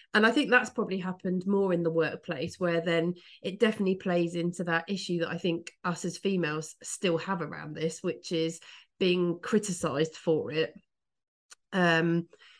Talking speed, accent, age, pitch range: 165 wpm, British, 30-49, 170-215 Hz